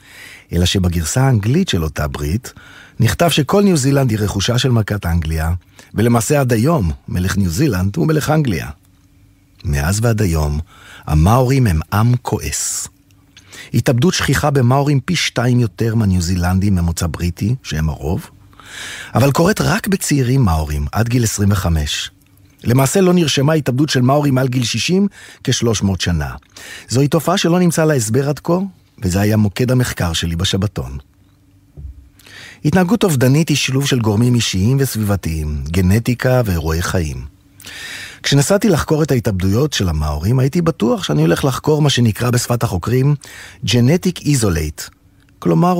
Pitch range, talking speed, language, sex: 95-140 Hz, 135 wpm, Hebrew, male